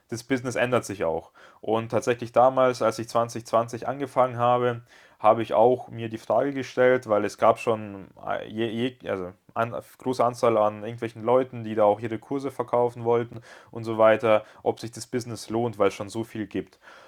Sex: male